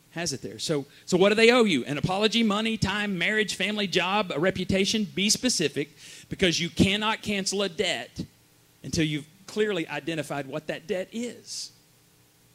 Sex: male